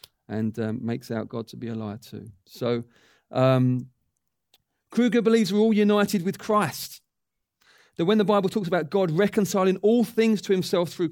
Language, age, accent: English, 40-59, British